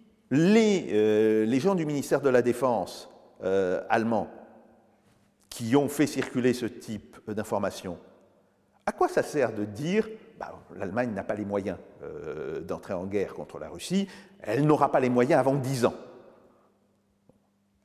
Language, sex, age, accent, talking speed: French, male, 50-69, French, 160 wpm